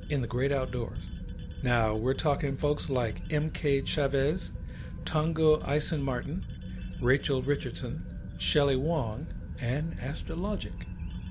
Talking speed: 105 wpm